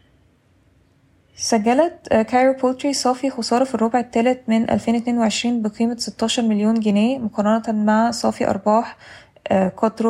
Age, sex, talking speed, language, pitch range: 20-39, female, 115 wpm, Arabic, 200-230 Hz